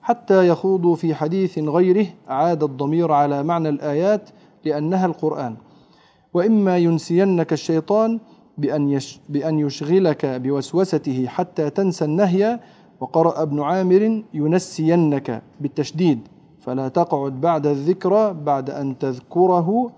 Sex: male